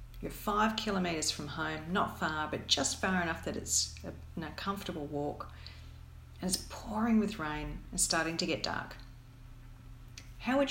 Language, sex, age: English, female, 40-59